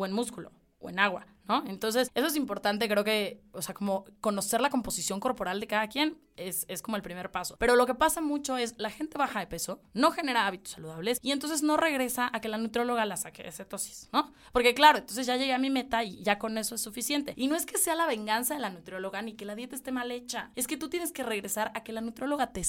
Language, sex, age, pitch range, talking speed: Spanish, female, 20-39, 215-285 Hz, 260 wpm